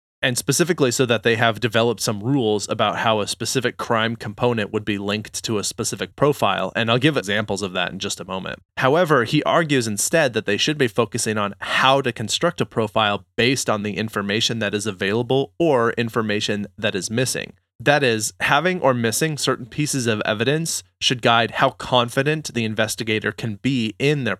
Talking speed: 190 wpm